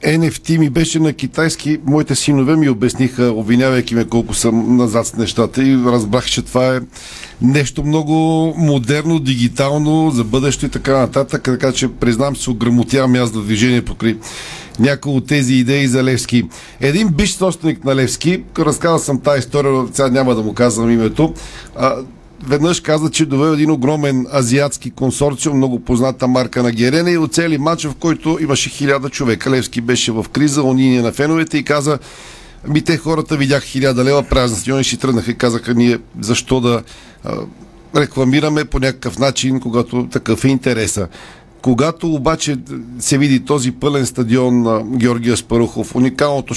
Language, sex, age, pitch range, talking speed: Bulgarian, male, 50-69, 120-145 Hz, 160 wpm